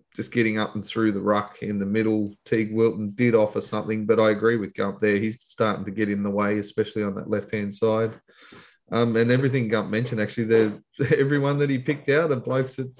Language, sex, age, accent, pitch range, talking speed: English, male, 20-39, Australian, 105-120 Hz, 220 wpm